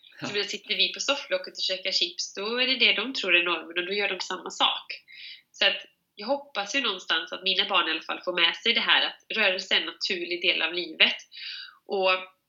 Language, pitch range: Swedish, 190-265 Hz